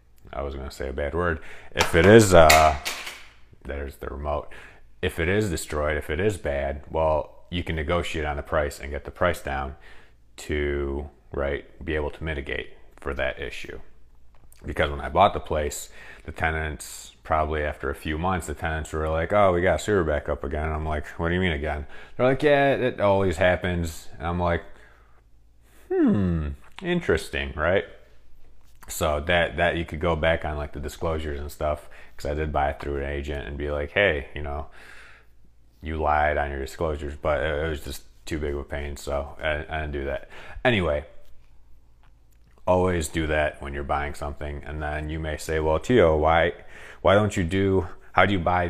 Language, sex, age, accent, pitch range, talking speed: English, male, 30-49, American, 70-85 Hz, 195 wpm